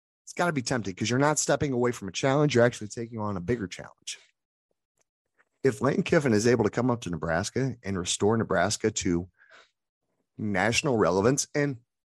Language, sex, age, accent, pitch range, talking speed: English, male, 30-49, American, 95-135 Hz, 185 wpm